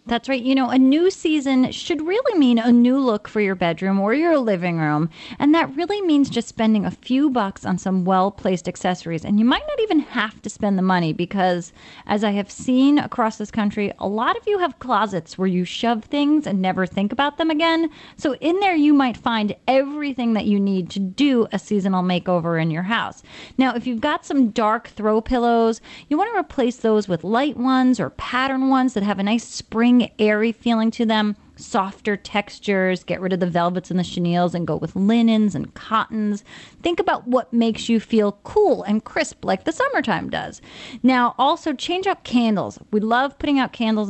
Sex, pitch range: female, 190-265 Hz